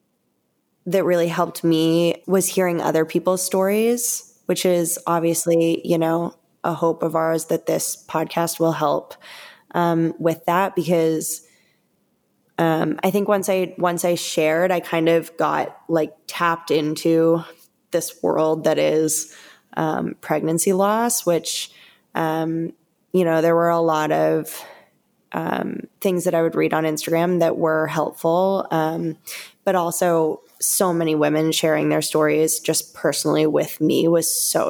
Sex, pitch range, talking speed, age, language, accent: female, 160-175 Hz, 145 wpm, 10-29, English, American